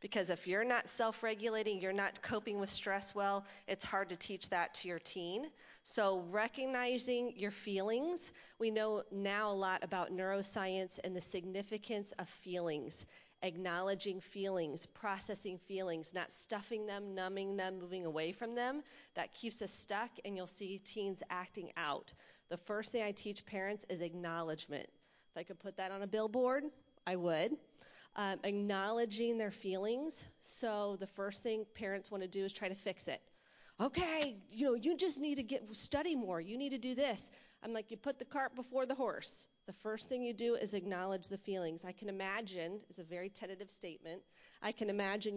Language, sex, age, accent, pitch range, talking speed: English, female, 30-49, American, 185-230 Hz, 180 wpm